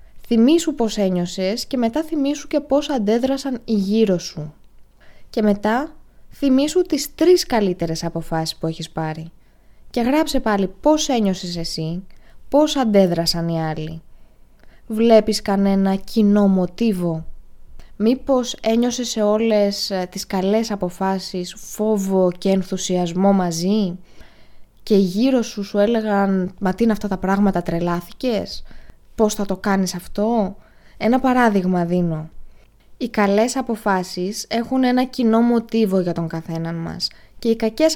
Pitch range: 180-245 Hz